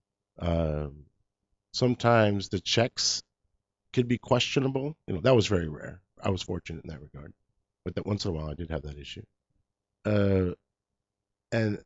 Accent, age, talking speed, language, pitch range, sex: American, 50-69, 160 wpm, English, 90-115 Hz, male